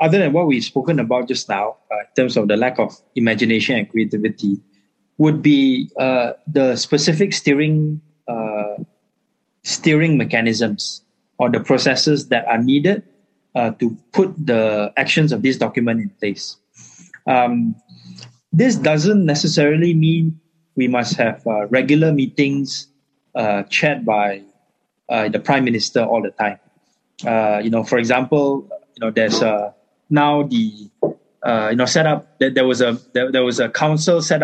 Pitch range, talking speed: 115-155 Hz, 155 wpm